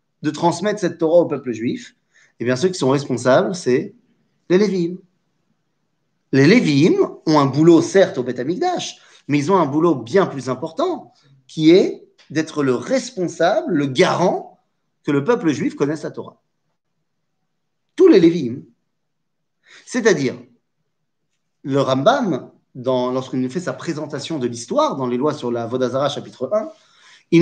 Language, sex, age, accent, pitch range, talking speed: French, male, 40-59, French, 130-185 Hz, 155 wpm